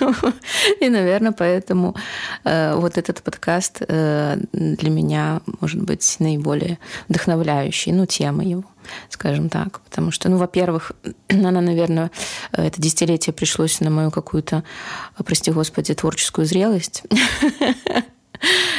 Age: 20-39